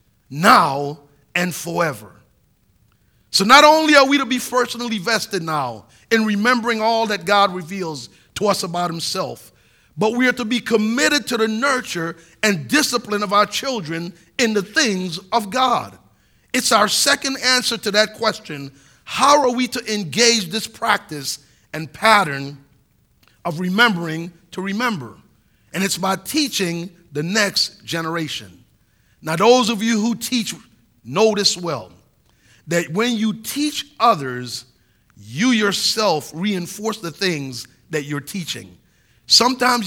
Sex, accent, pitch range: male, American, 165-235 Hz